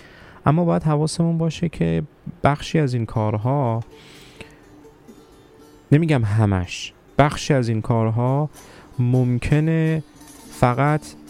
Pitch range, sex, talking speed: 100-125 Hz, male, 90 wpm